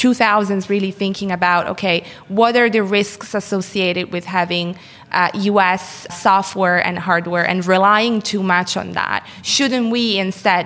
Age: 20-39